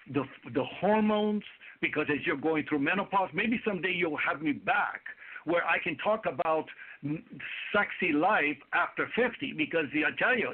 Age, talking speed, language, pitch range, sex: 60-79, 170 wpm, English, 170-240 Hz, male